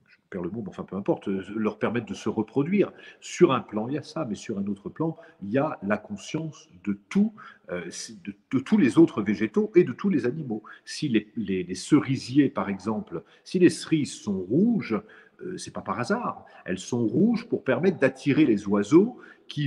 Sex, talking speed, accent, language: male, 210 wpm, French, French